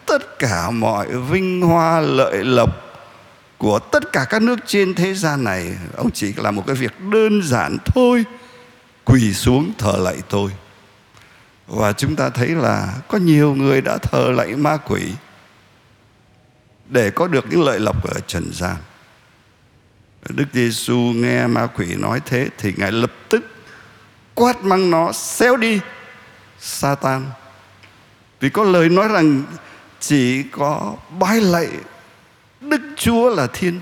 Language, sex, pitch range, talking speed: Vietnamese, male, 110-165 Hz, 145 wpm